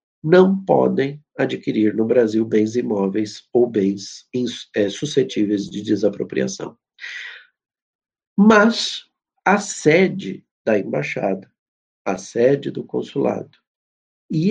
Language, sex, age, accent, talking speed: Portuguese, male, 50-69, Brazilian, 90 wpm